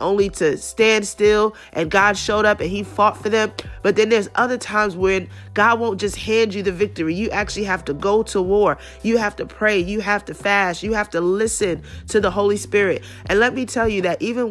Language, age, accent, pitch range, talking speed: English, 30-49, American, 195-230 Hz, 230 wpm